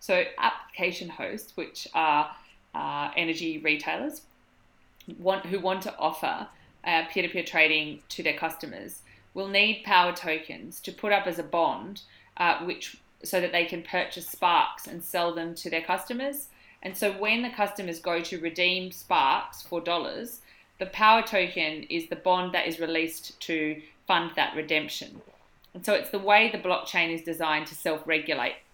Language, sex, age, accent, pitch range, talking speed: English, female, 20-39, Australian, 160-190 Hz, 165 wpm